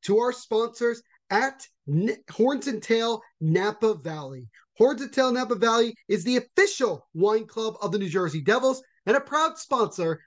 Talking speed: 165 wpm